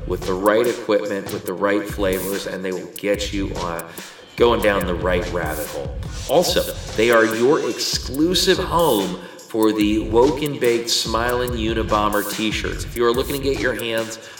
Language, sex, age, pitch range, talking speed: English, male, 30-49, 100-125 Hz, 175 wpm